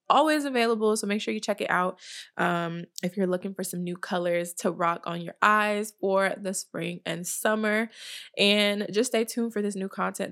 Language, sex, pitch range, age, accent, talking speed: English, female, 170-205 Hz, 20-39, American, 205 wpm